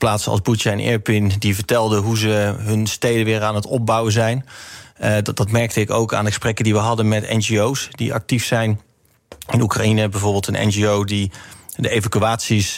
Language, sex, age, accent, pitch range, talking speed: Dutch, male, 30-49, Dutch, 105-115 Hz, 195 wpm